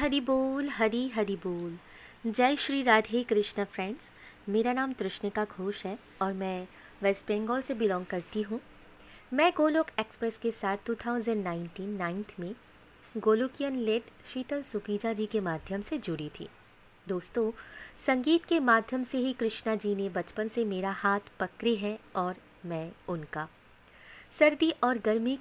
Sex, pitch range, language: female, 185-250 Hz, Hindi